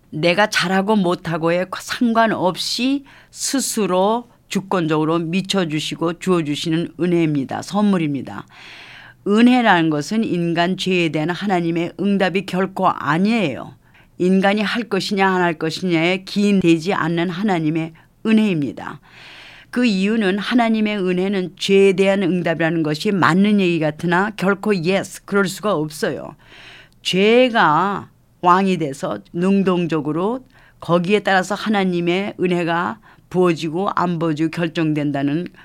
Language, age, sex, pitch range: Korean, 40-59, female, 165-205 Hz